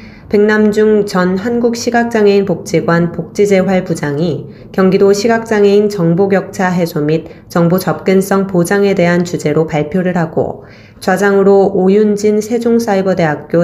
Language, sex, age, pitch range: Korean, female, 20-39, 160-205 Hz